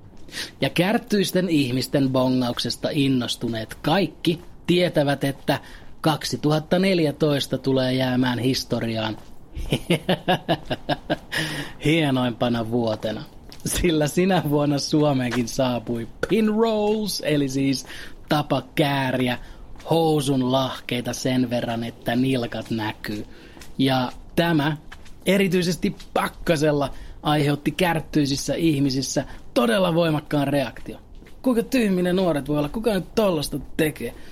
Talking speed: 90 wpm